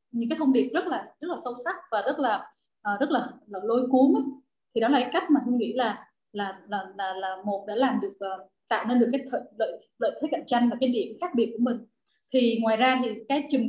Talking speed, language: 255 wpm, Vietnamese